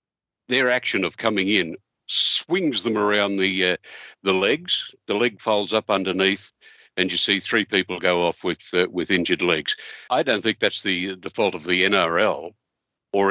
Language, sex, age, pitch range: English, male, 60-79, 95-115 Hz